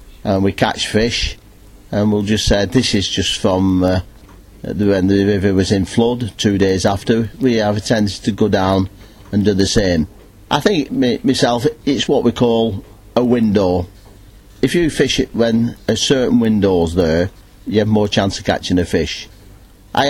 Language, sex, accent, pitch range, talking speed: English, male, British, 100-120 Hz, 190 wpm